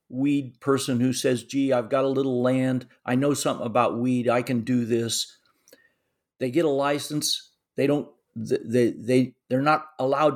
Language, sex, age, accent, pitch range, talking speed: English, male, 50-69, American, 120-145 Hz, 175 wpm